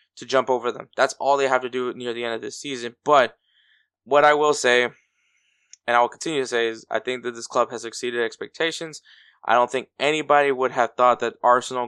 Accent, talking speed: American, 225 wpm